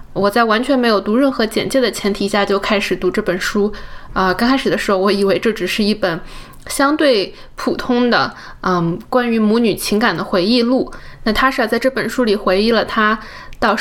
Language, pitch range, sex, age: Chinese, 195-240 Hz, female, 20-39